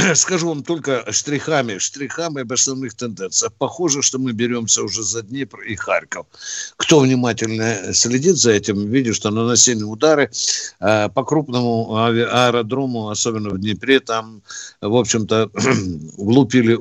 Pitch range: 120-165 Hz